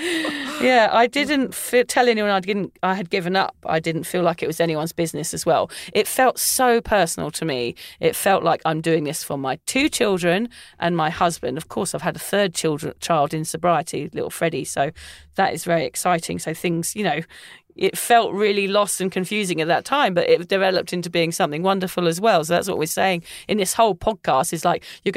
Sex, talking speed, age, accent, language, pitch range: female, 215 wpm, 40-59, British, English, 170-220 Hz